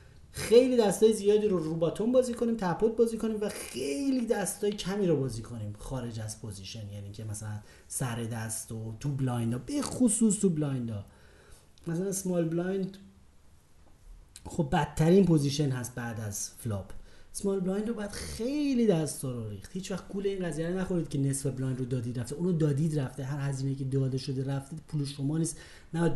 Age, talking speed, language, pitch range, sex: 30-49, 175 wpm, Persian, 110-170 Hz, male